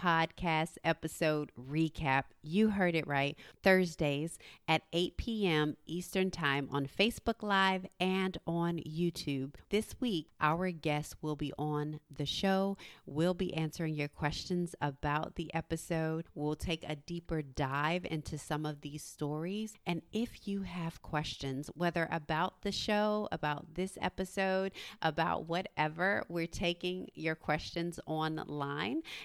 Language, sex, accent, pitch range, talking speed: English, female, American, 150-190 Hz, 135 wpm